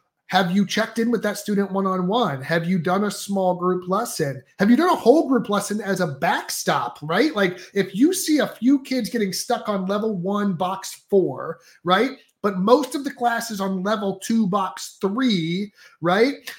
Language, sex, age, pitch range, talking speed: English, male, 30-49, 180-235 Hz, 195 wpm